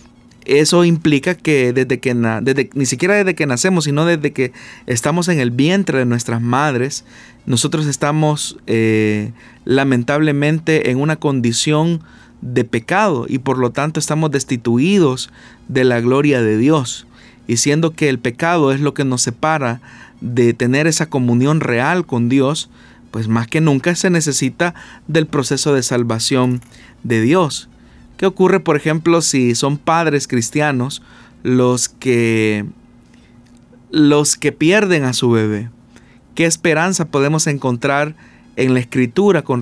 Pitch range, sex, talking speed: 120-155 Hz, male, 145 wpm